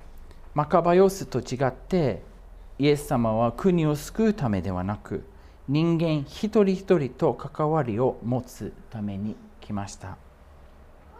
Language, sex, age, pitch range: Japanese, male, 40-59, 110-180 Hz